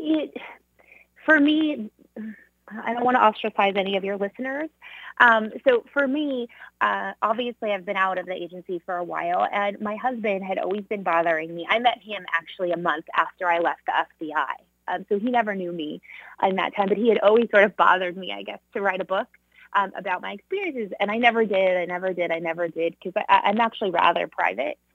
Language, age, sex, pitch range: English, 20-39, female, 175-220 Hz